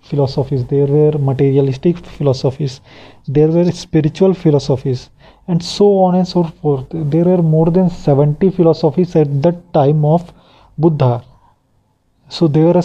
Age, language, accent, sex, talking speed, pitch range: 30-49, Hindi, native, male, 135 wpm, 135-165 Hz